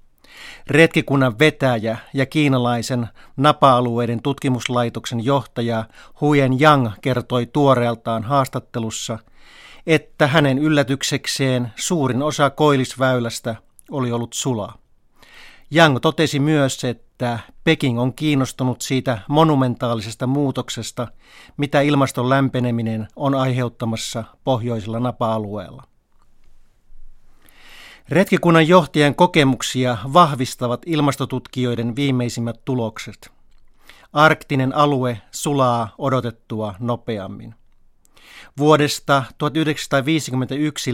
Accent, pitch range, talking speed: native, 120-145 Hz, 75 wpm